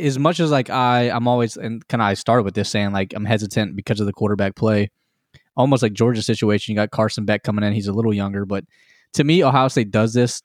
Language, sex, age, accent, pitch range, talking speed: English, male, 20-39, American, 105-120 Hz, 255 wpm